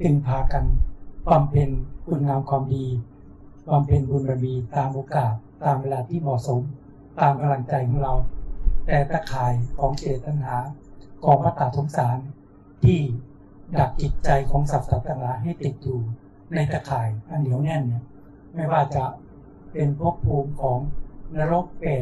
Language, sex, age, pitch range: Thai, male, 60-79, 125-150 Hz